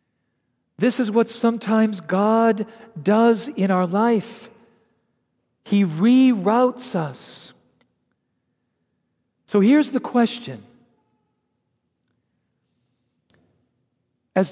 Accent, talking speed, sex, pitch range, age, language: American, 70 wpm, male, 180-240 Hz, 50-69, English